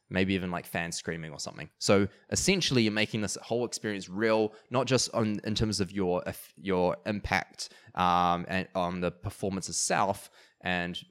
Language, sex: English, male